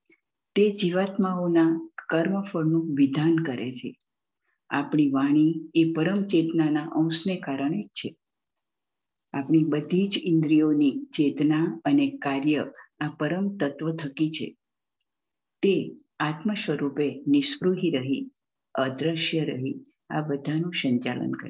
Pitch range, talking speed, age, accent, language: 145-180 Hz, 105 wpm, 50-69, Indian, English